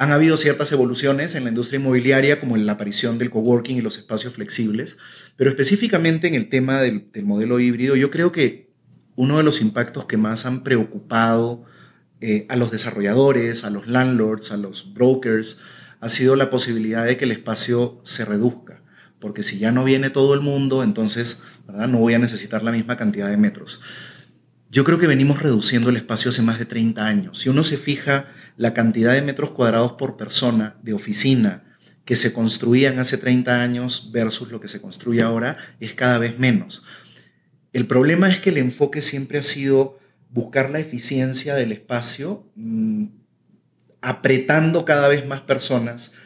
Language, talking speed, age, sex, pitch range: Spanish, 180 wpm, 30-49, male, 115-140 Hz